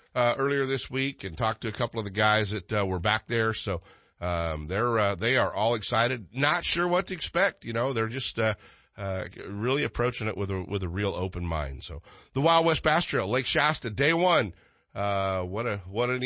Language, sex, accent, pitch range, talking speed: English, male, American, 95-130 Hz, 225 wpm